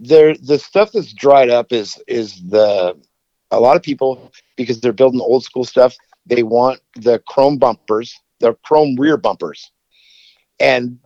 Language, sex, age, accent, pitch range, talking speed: English, male, 50-69, American, 130-155 Hz, 165 wpm